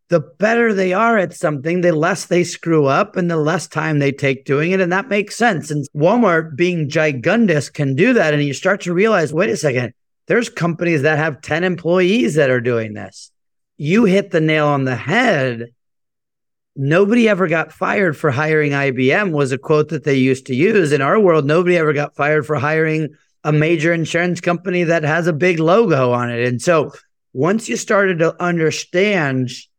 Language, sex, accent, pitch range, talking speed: English, male, American, 145-180 Hz, 195 wpm